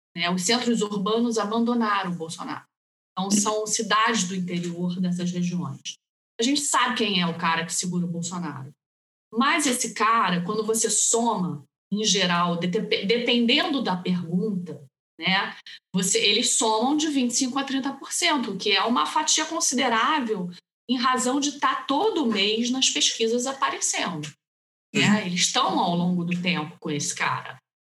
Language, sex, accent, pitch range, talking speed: Portuguese, female, Brazilian, 180-255 Hz, 150 wpm